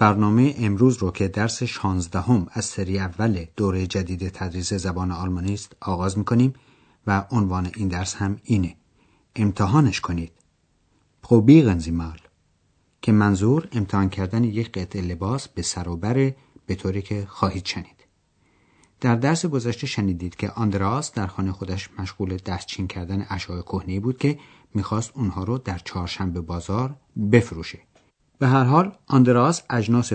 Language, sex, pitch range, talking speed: Persian, male, 95-120 Hz, 145 wpm